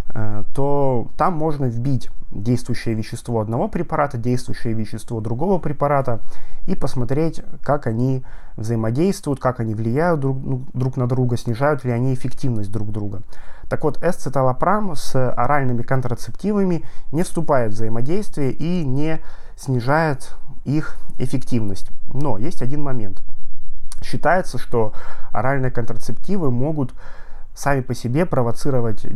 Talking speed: 120 wpm